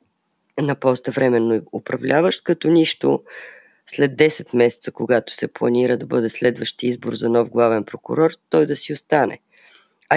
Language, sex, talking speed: Bulgarian, female, 150 wpm